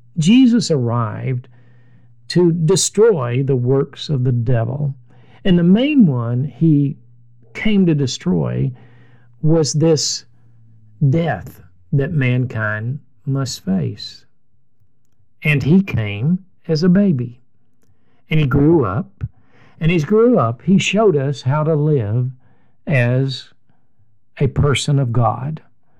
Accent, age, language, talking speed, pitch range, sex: American, 50-69, English, 115 wpm, 120-170 Hz, male